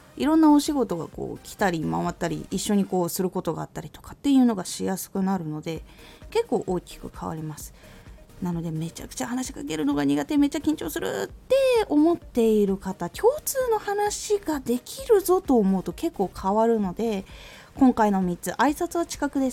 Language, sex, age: Japanese, female, 20-39